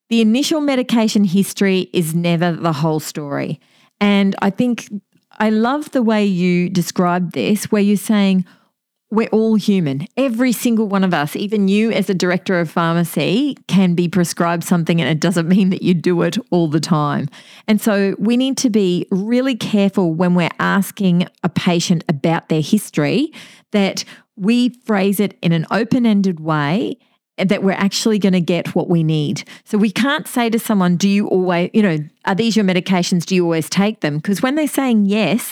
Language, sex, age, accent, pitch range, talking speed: English, female, 40-59, Australian, 180-220 Hz, 185 wpm